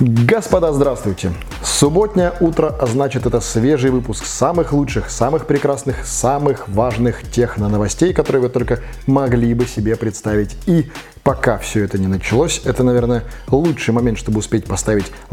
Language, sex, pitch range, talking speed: Russian, male, 105-130 Hz, 145 wpm